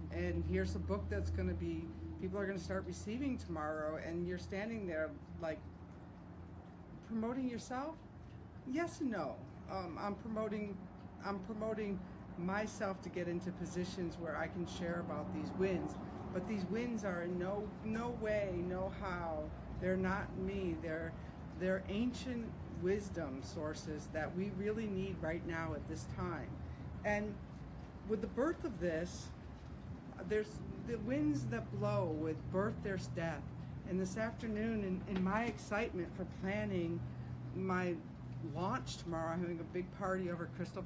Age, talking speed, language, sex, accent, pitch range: 50-69, 145 wpm, English, female, American, 155-195 Hz